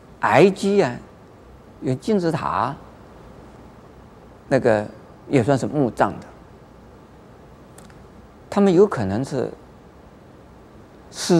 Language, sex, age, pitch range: Chinese, male, 50-69, 125-185 Hz